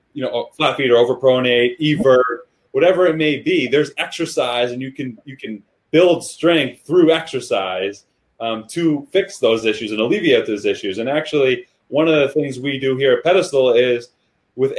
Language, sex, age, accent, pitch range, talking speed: English, male, 30-49, American, 135-180 Hz, 180 wpm